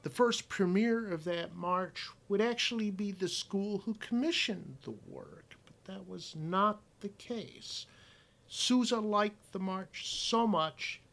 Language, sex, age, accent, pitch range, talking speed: English, male, 50-69, American, 135-205 Hz, 145 wpm